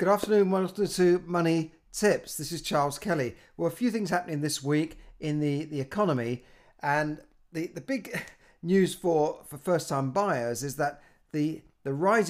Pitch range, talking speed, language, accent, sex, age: 130-170 Hz, 175 wpm, English, British, male, 50-69